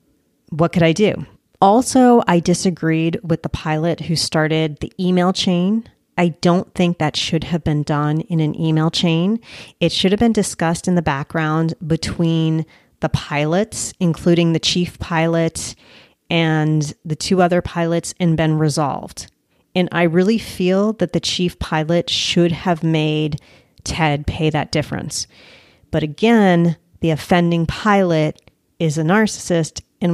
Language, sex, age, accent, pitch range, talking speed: English, female, 30-49, American, 155-180 Hz, 145 wpm